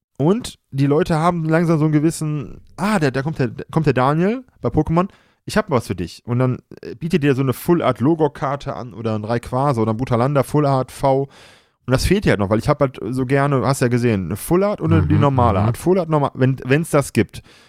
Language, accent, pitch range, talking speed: German, German, 115-150 Hz, 250 wpm